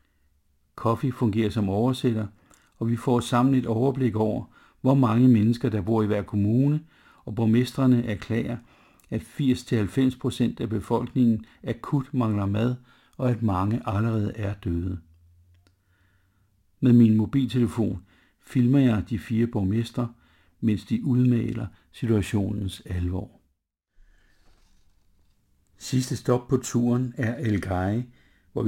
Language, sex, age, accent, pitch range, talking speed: Danish, male, 60-79, native, 95-120 Hz, 115 wpm